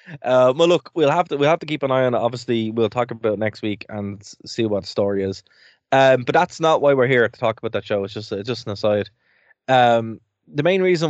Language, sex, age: English, male, 20-39